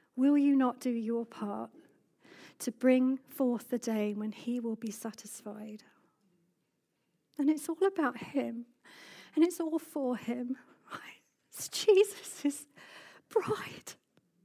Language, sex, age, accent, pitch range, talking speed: English, female, 40-59, British, 235-310 Hz, 125 wpm